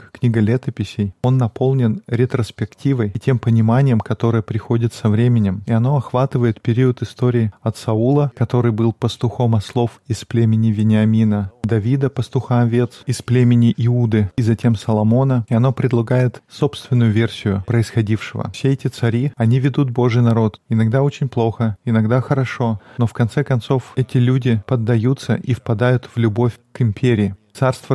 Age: 20-39